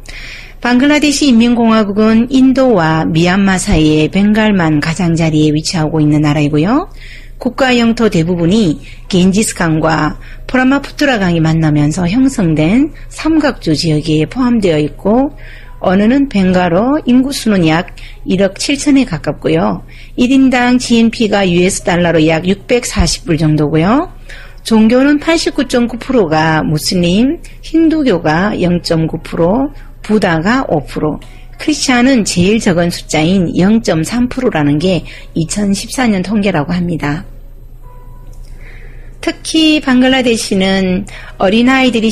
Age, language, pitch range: 40-59, Korean, 160-250 Hz